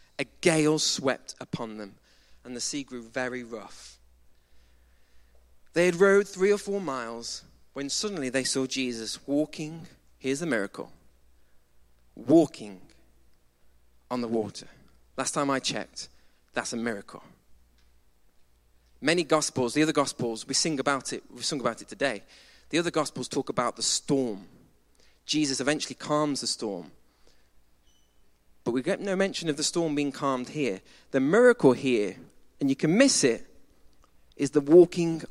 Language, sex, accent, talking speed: English, male, British, 145 wpm